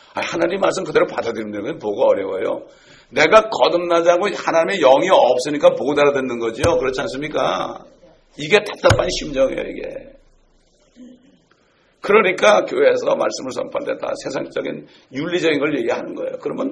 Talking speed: 120 wpm